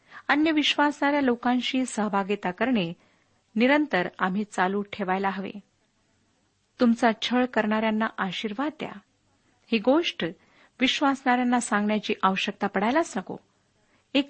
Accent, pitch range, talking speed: native, 195-265 Hz, 95 wpm